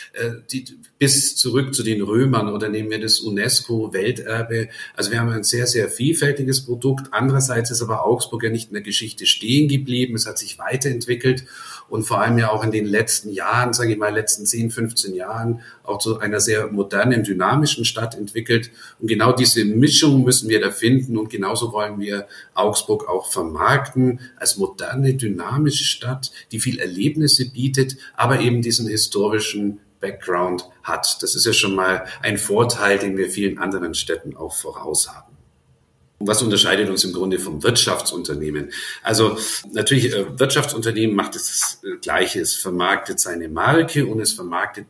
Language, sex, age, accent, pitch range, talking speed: German, male, 50-69, German, 105-125 Hz, 165 wpm